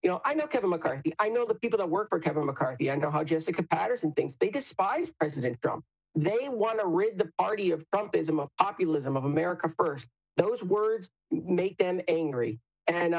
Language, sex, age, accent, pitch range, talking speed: English, male, 40-59, American, 170-245 Hz, 200 wpm